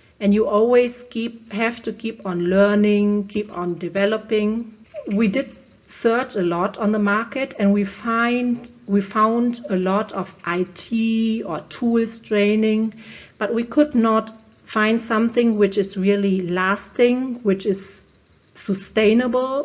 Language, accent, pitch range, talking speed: German, German, 195-230 Hz, 135 wpm